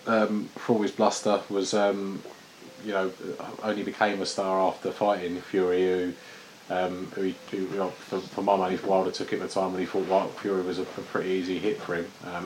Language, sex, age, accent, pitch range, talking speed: English, male, 20-39, British, 90-100 Hz, 220 wpm